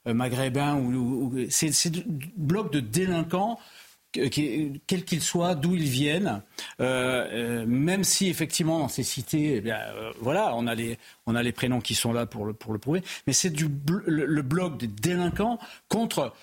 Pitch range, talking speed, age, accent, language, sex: 130-180 Hz, 180 wpm, 50-69, French, French, male